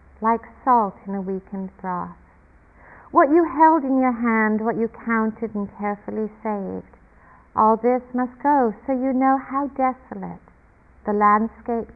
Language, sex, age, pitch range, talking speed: English, female, 50-69, 195-245 Hz, 145 wpm